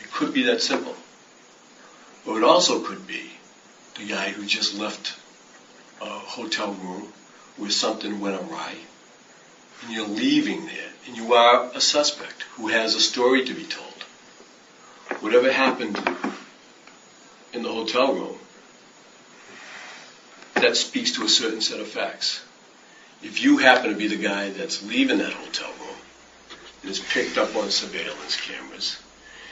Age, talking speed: 60-79, 140 wpm